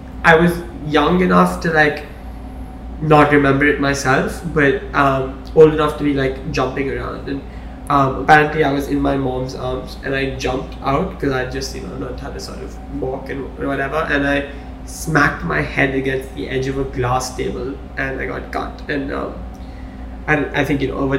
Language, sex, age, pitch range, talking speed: English, male, 20-39, 130-145 Hz, 200 wpm